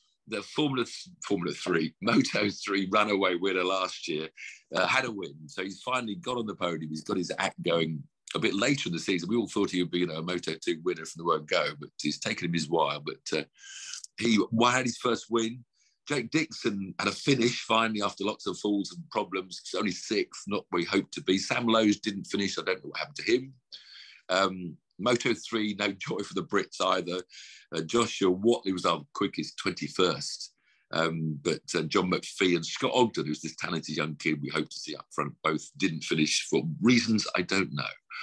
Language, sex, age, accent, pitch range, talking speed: English, male, 50-69, British, 90-120 Hz, 210 wpm